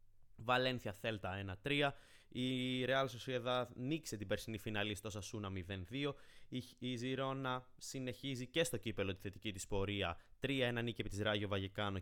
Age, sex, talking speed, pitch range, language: 20-39, male, 155 wpm, 100-120 Hz, Greek